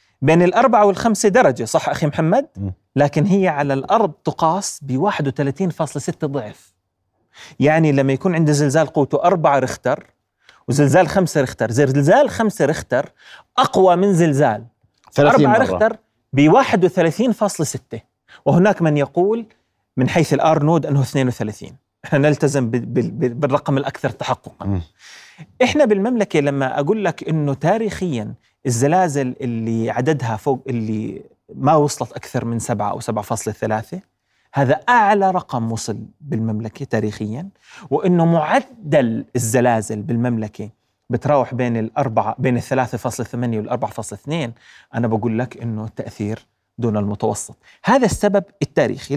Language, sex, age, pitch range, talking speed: Arabic, male, 30-49, 115-170 Hz, 120 wpm